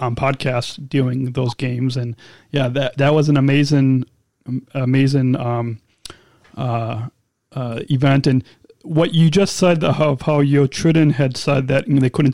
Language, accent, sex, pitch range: English, American, male, 130-150 Hz